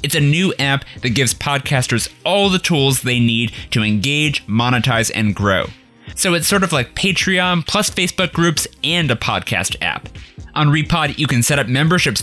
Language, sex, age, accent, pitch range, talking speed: English, male, 20-39, American, 110-145 Hz, 180 wpm